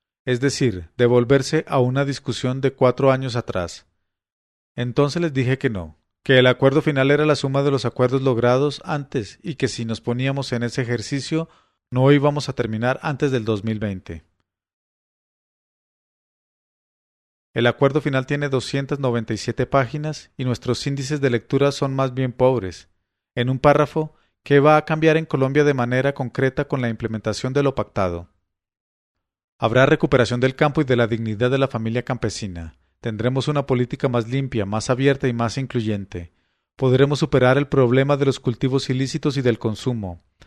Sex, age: male, 40-59